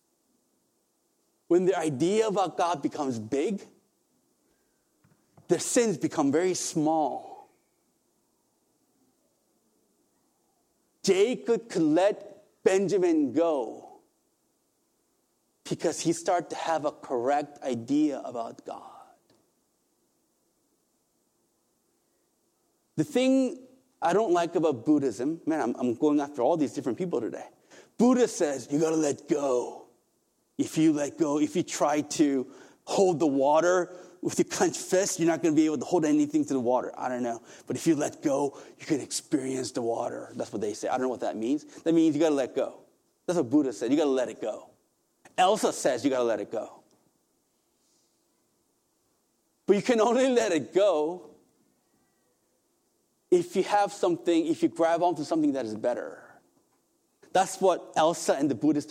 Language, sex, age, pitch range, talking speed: English, male, 30-49, 150-245 Hz, 155 wpm